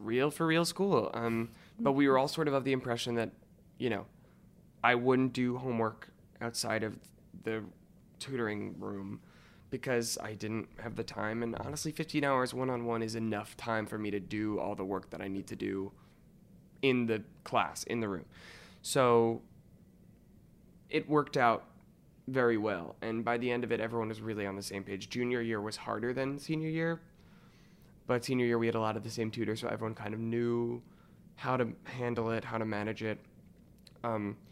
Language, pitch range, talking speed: English, 105-125 Hz, 190 wpm